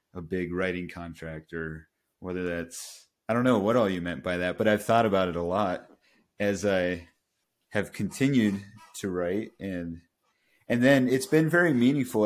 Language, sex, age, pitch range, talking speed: English, male, 30-49, 90-105 Hz, 175 wpm